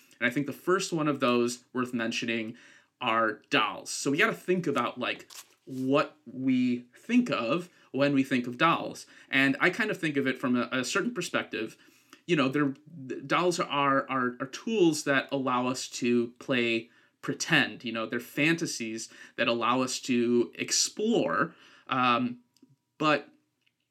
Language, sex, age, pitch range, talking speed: English, male, 30-49, 120-155 Hz, 160 wpm